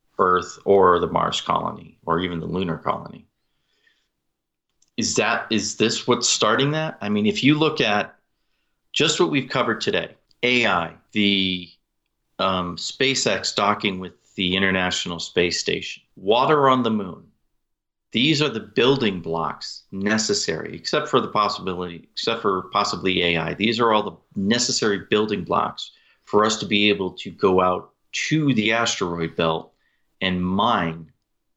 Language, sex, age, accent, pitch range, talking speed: English, male, 40-59, American, 90-110 Hz, 145 wpm